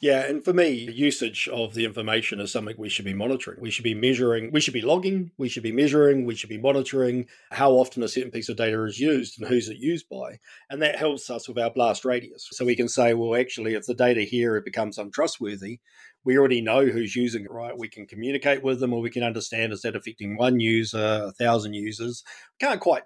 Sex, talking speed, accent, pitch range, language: male, 240 wpm, Australian, 115-135 Hz, English